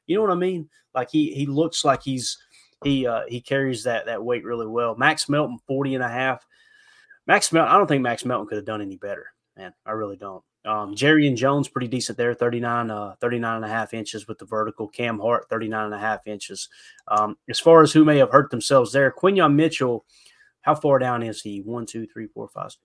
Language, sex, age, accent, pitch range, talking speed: English, male, 30-49, American, 115-140 Hz, 230 wpm